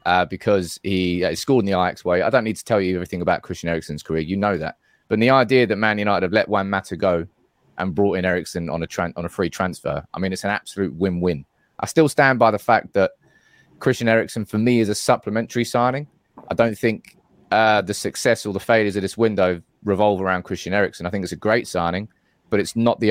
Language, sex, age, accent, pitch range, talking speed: English, male, 20-39, British, 90-115 Hz, 240 wpm